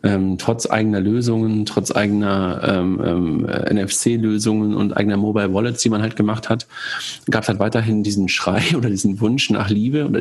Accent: German